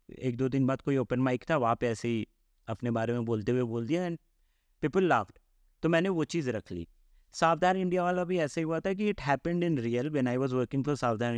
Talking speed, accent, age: 160 wpm, Indian, 30-49